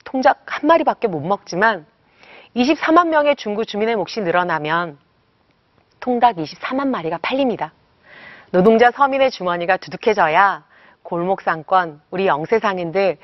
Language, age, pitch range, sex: Korean, 40-59, 170-250 Hz, female